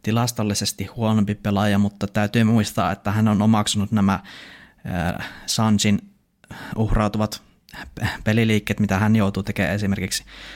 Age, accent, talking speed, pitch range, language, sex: 20-39, native, 110 wpm, 100-110 Hz, Finnish, male